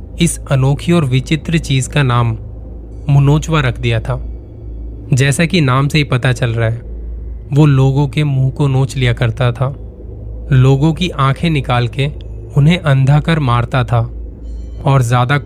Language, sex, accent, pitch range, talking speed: Hindi, male, native, 120-145 Hz, 160 wpm